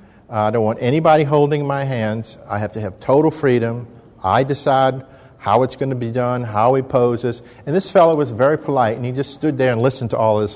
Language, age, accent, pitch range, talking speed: English, 50-69, American, 110-130 Hz, 225 wpm